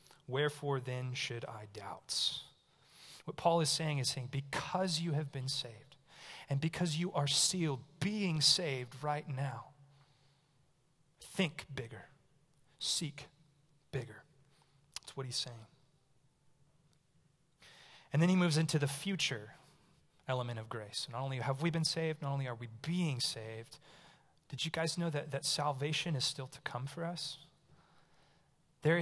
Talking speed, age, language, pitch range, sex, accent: 145 wpm, 30-49, English, 135-160 Hz, male, American